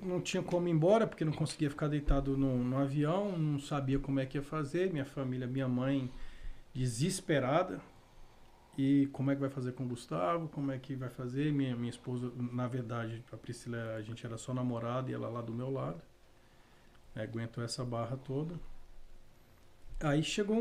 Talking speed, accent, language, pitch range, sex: 185 wpm, Brazilian, Portuguese, 125-150 Hz, male